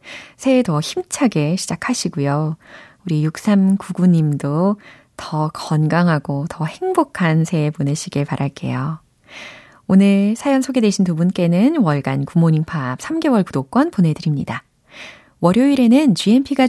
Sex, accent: female, native